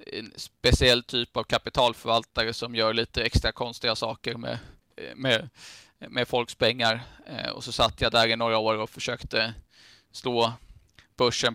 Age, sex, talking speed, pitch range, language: 20-39, male, 140 wpm, 110-120 Hz, Swedish